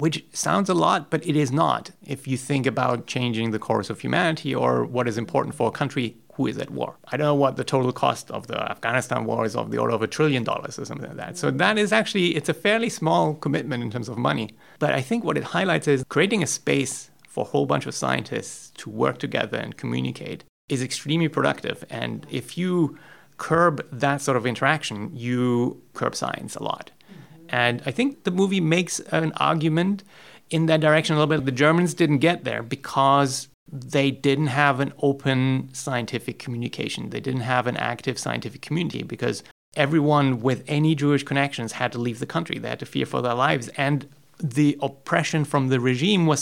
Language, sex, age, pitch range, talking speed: English, male, 30-49, 130-160 Hz, 205 wpm